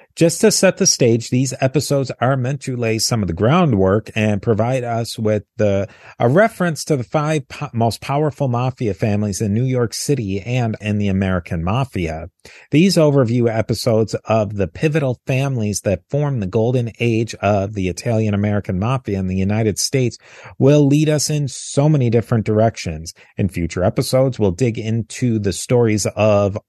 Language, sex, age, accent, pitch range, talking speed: English, male, 40-59, American, 105-140 Hz, 165 wpm